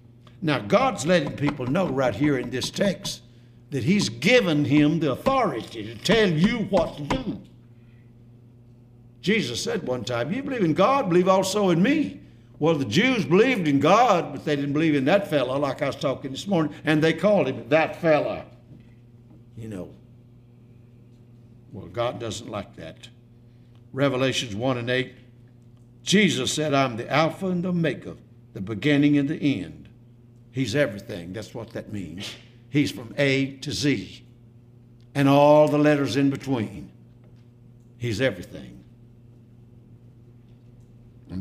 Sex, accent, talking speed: male, American, 150 wpm